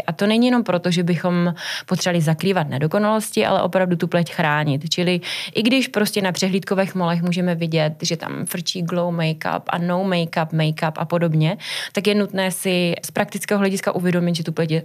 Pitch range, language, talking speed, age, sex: 160-195 Hz, Czech, 190 wpm, 20-39, female